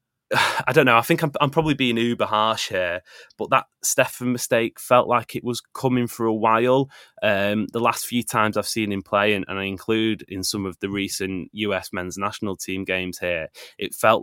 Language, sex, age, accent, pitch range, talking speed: English, male, 20-39, British, 100-120 Hz, 210 wpm